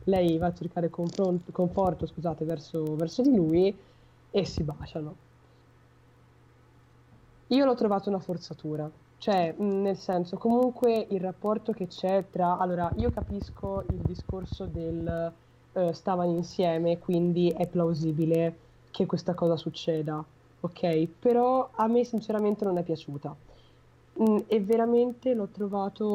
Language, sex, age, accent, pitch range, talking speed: Italian, female, 20-39, native, 165-195 Hz, 125 wpm